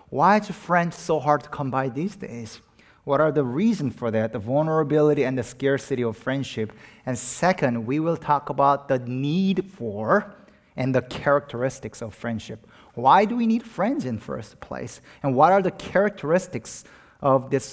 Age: 30-49